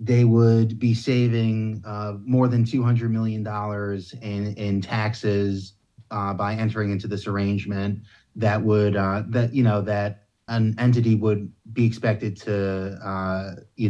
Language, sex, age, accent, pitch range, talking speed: English, male, 30-49, American, 100-115 Hz, 145 wpm